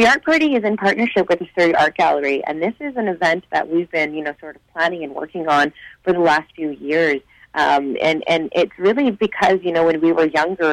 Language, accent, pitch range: English, American, 145-170 Hz